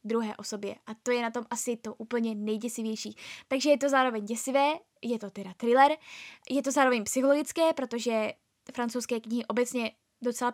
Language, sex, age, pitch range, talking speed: Czech, female, 10-29, 240-290 Hz, 165 wpm